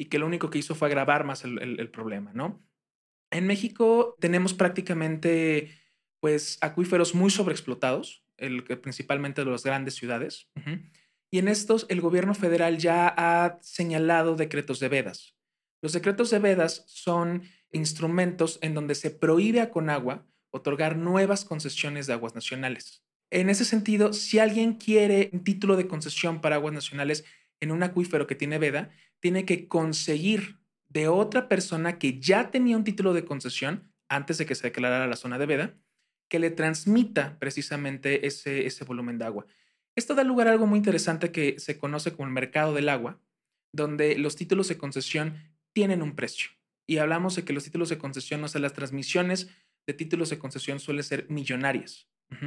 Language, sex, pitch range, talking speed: Spanish, male, 140-180 Hz, 170 wpm